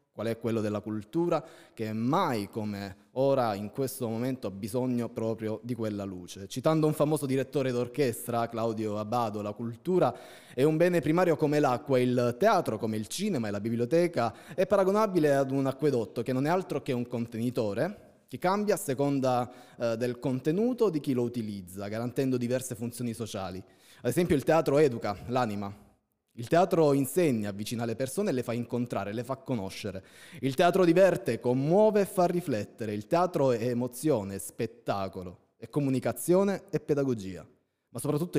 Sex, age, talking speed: male, 20-39, 160 wpm